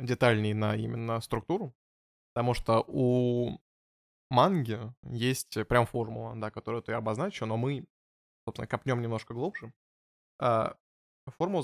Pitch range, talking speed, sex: 115-130 Hz, 115 wpm, male